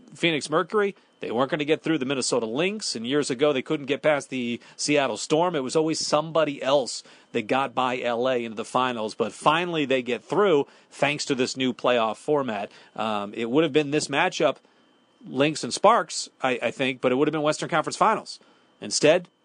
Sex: male